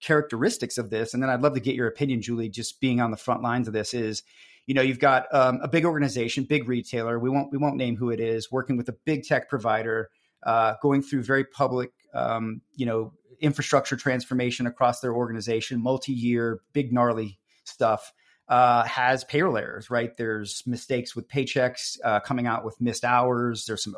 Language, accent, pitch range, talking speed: English, American, 115-135 Hz, 200 wpm